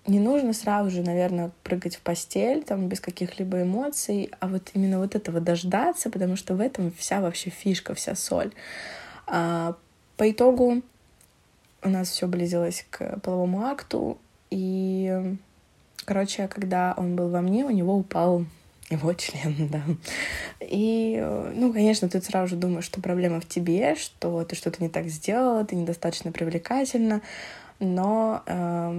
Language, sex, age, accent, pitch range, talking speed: Russian, female, 20-39, native, 170-210 Hz, 145 wpm